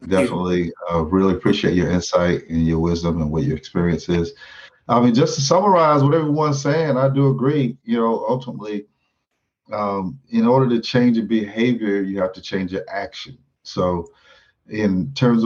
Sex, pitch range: male, 95-115 Hz